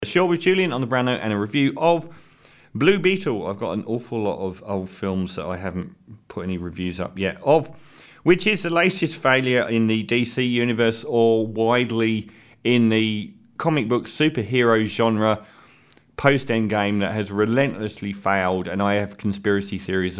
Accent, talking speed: British, 180 wpm